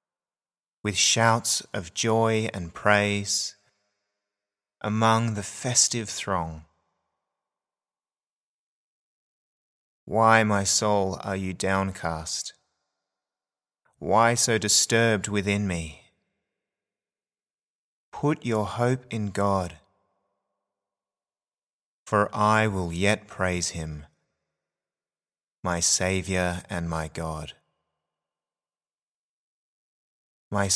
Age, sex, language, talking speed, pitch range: 30-49, male, English, 75 wpm, 85-100 Hz